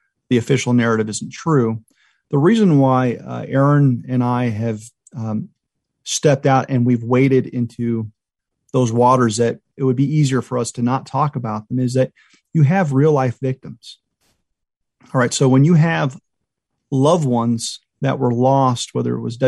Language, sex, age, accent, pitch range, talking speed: English, male, 40-59, American, 120-140 Hz, 170 wpm